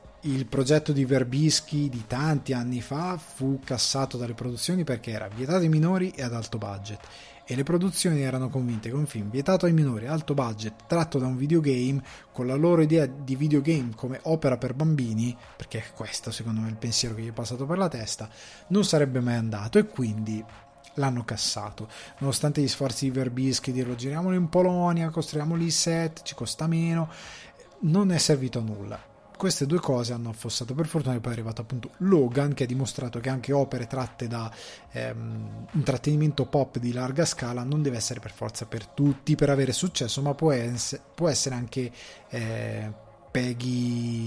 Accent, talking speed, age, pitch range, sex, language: native, 180 wpm, 20-39, 115-145 Hz, male, Italian